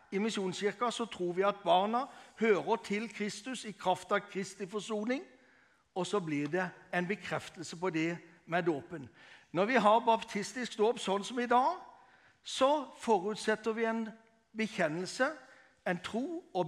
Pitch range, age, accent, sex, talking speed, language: 190-245 Hz, 60-79, Swedish, male, 150 wpm, English